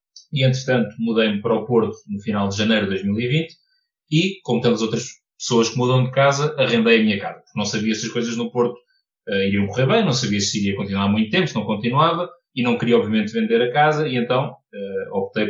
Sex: male